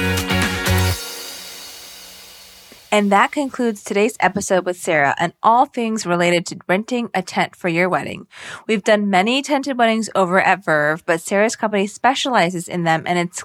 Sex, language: female, English